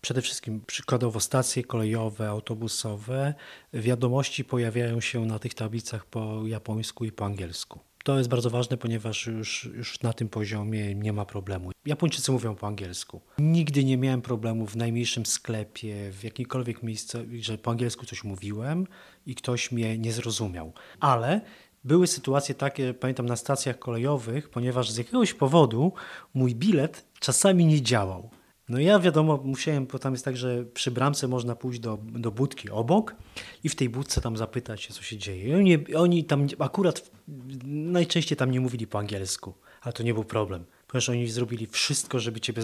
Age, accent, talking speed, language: 30-49, native, 165 wpm, Polish